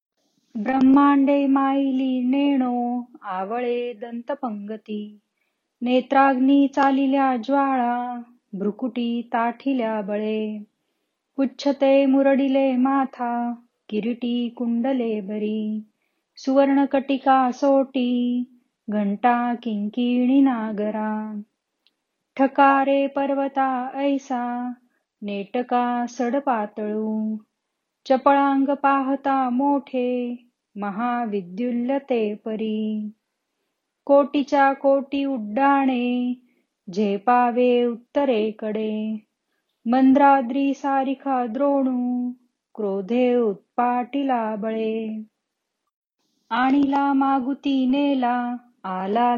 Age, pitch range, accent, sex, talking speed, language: 20-39, 225-275 Hz, native, female, 55 wpm, Marathi